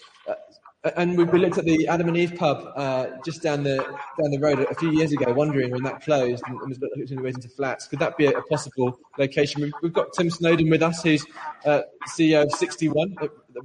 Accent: British